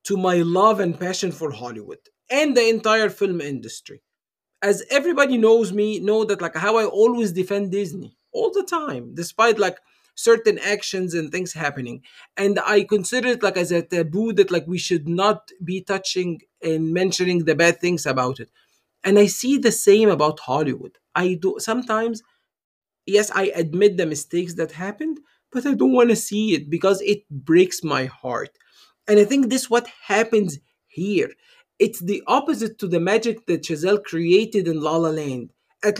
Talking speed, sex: 180 wpm, male